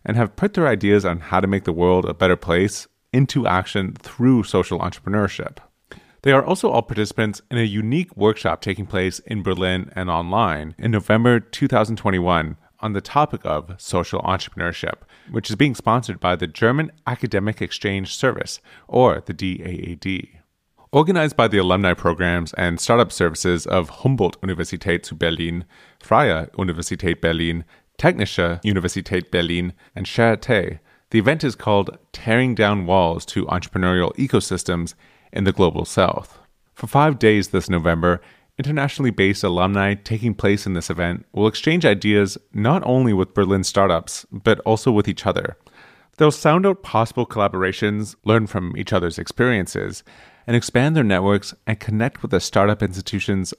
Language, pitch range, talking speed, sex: English, 90-115 Hz, 150 wpm, male